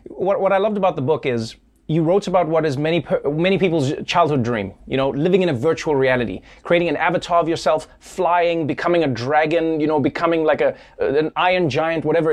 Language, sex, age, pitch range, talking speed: English, male, 20-39, 140-180 Hz, 215 wpm